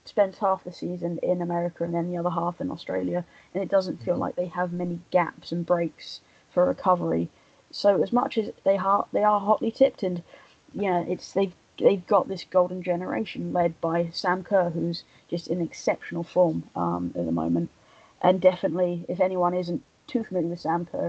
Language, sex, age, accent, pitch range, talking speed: English, female, 20-39, British, 170-195 Hz, 200 wpm